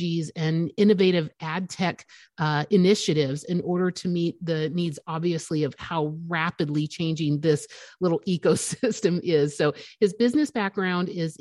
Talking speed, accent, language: 135 wpm, American, English